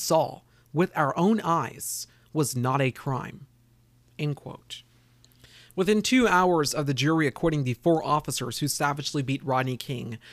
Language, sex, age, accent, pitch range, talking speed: English, male, 30-49, American, 130-180 Hz, 155 wpm